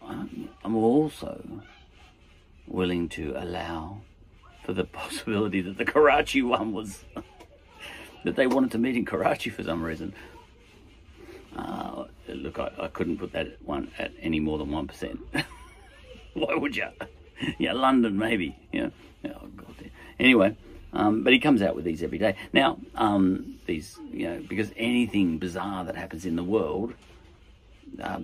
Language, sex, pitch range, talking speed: English, male, 90-120 Hz, 150 wpm